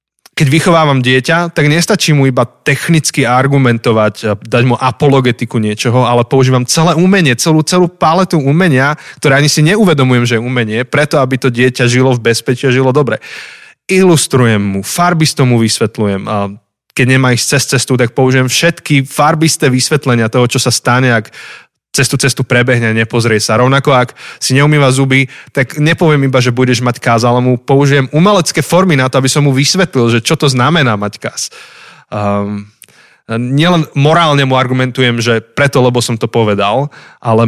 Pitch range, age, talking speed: 120-145 Hz, 20-39, 170 wpm